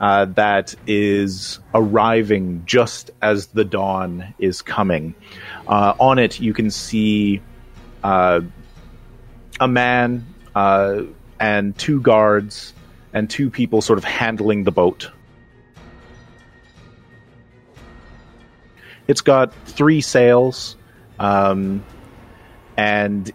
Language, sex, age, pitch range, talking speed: English, male, 30-49, 100-120 Hz, 95 wpm